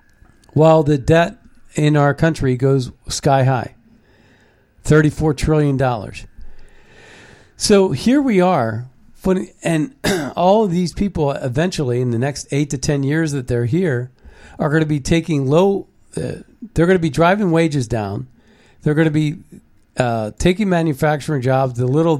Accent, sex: American, male